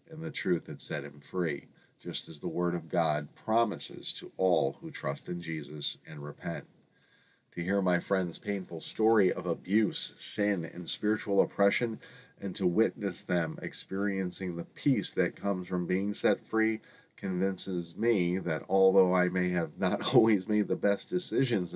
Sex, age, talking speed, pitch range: male, 40-59, 165 wpm, 85-110 Hz